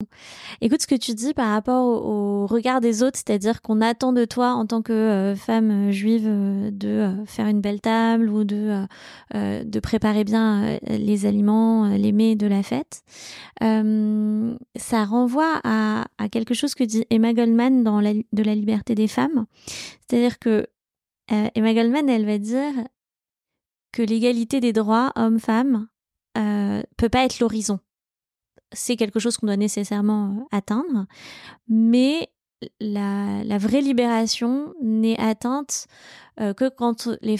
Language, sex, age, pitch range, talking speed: French, female, 20-39, 210-245 Hz, 160 wpm